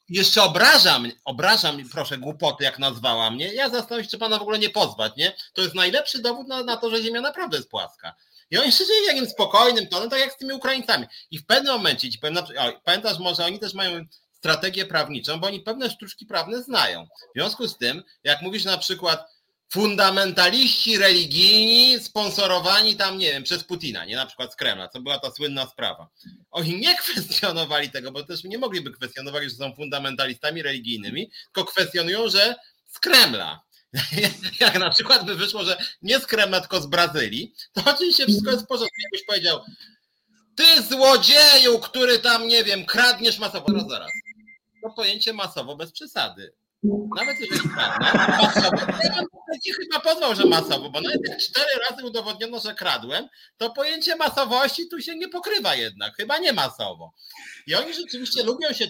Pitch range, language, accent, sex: 175-245 Hz, Polish, native, male